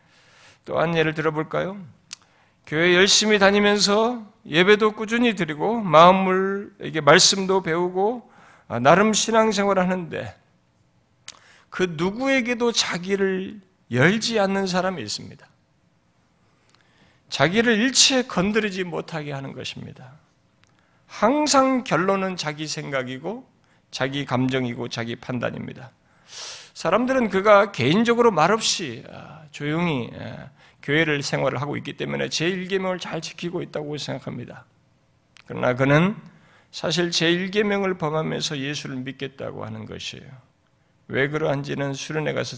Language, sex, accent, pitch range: Korean, male, native, 135-200 Hz